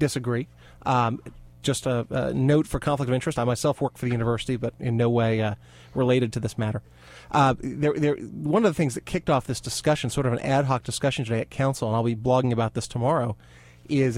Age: 30-49